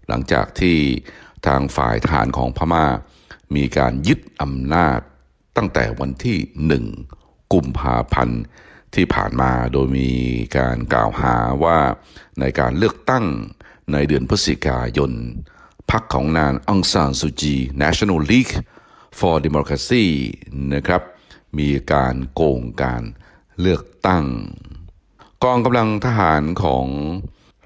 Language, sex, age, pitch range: Thai, male, 60-79, 65-85 Hz